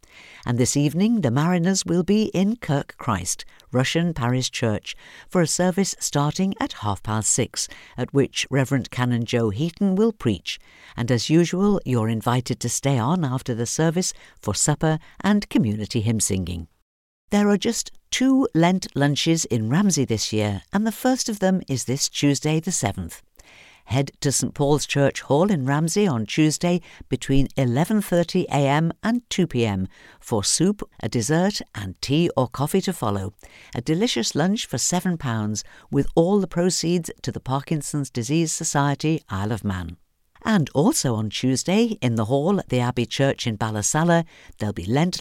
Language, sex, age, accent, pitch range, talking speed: English, female, 50-69, British, 115-175 Hz, 165 wpm